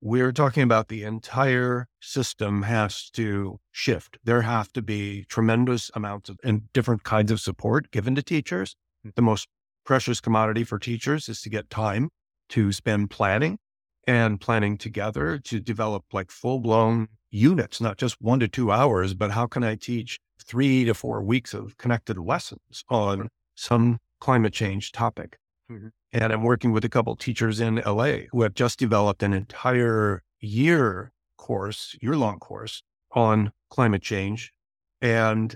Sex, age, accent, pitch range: male, 50-69, American, 105-125 Hz